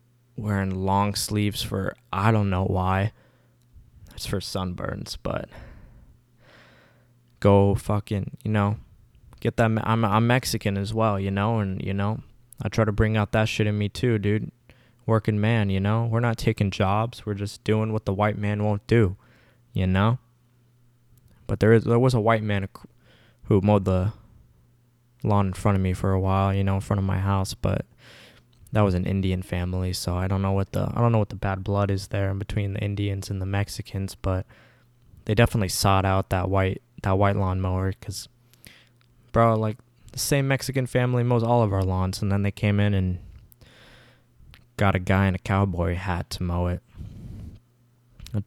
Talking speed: 190 wpm